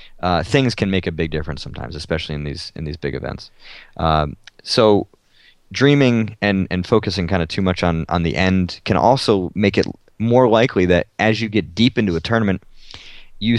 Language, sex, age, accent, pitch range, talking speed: English, male, 30-49, American, 85-105 Hz, 195 wpm